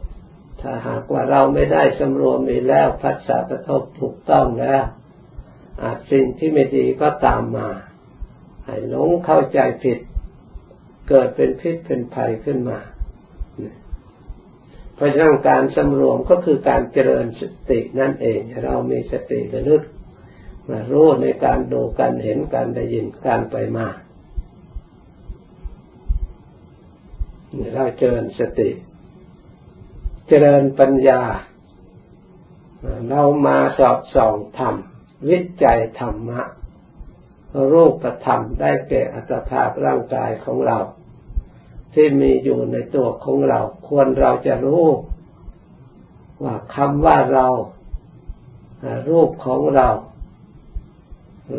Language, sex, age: Thai, male, 60-79